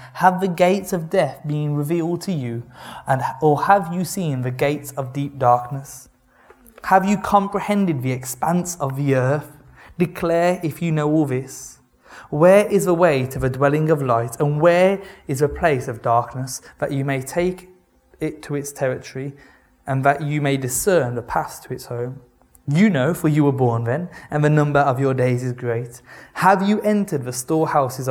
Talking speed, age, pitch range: 185 wpm, 20-39, 130-165 Hz